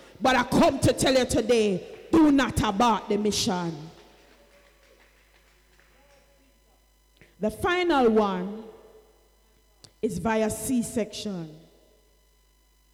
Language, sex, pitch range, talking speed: English, female, 200-275 Hz, 85 wpm